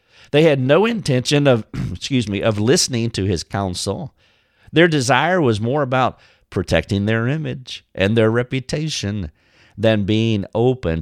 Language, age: English, 50-69